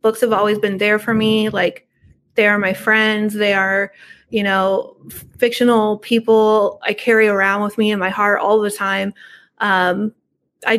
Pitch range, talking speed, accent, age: 195-225 Hz, 170 wpm, American, 20-39